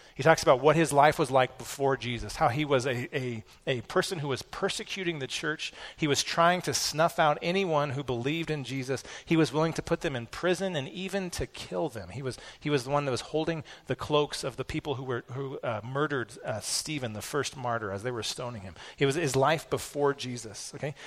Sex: male